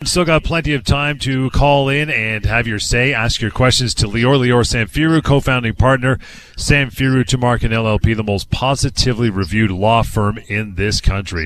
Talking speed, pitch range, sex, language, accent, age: 175 wpm, 95-125 Hz, male, English, American, 30-49